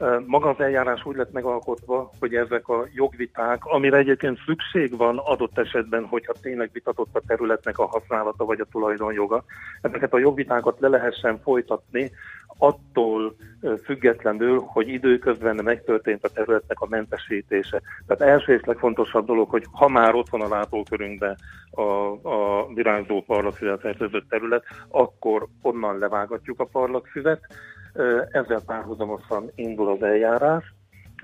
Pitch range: 105-125 Hz